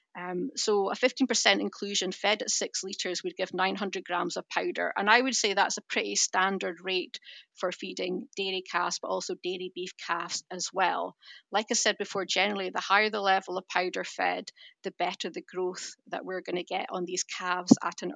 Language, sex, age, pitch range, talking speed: English, female, 30-49, 185-225 Hz, 200 wpm